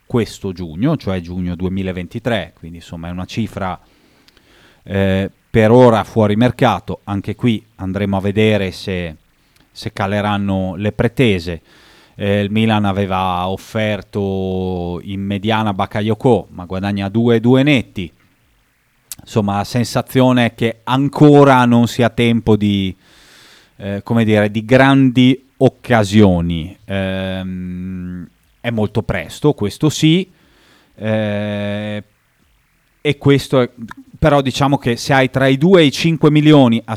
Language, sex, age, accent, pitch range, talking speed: Italian, male, 30-49, native, 100-125 Hz, 125 wpm